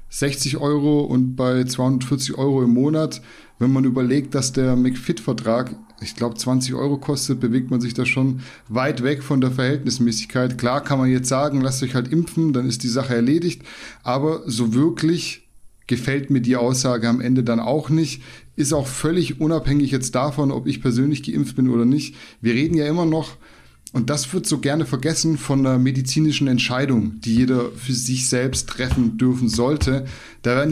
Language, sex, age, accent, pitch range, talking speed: German, male, 10-29, German, 120-145 Hz, 180 wpm